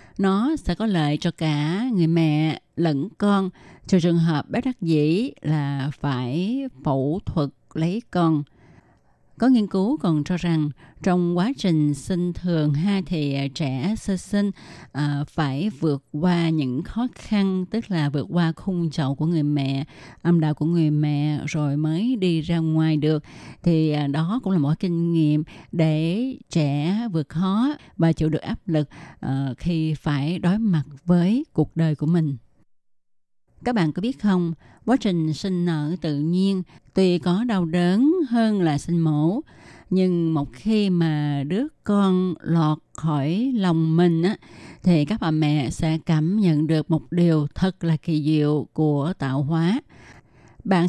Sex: female